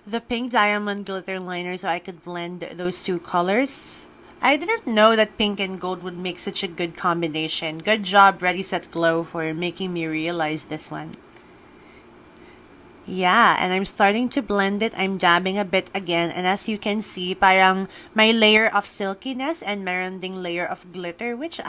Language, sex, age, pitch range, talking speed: English, female, 30-49, 175-215 Hz, 175 wpm